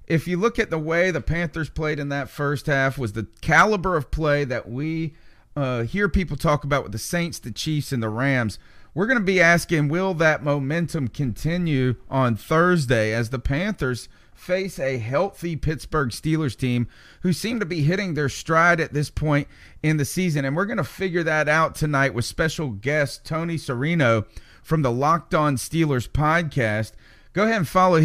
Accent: American